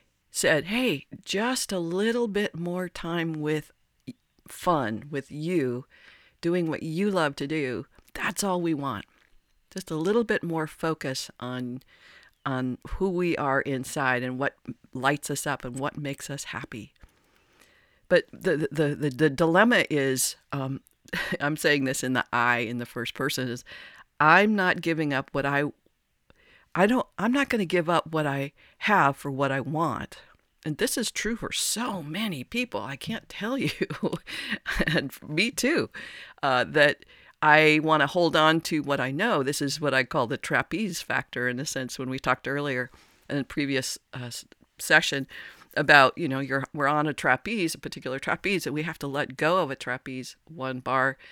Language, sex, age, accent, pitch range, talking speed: English, female, 50-69, American, 135-175 Hz, 180 wpm